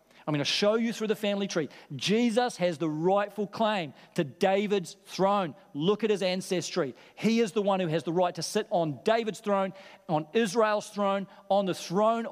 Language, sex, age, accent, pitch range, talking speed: English, male, 40-59, Australian, 175-225 Hz, 195 wpm